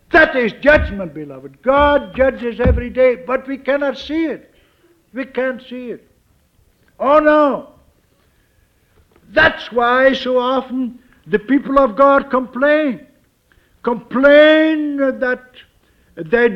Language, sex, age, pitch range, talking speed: English, male, 60-79, 190-275 Hz, 110 wpm